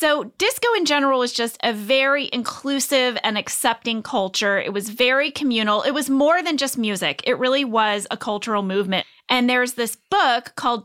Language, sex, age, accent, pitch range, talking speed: English, female, 30-49, American, 200-270 Hz, 185 wpm